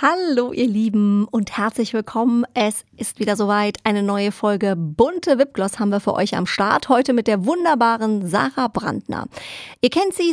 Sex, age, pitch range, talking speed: female, 30-49, 205-265 Hz, 175 wpm